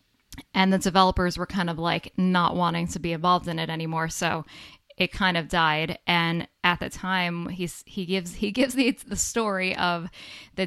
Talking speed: 180 wpm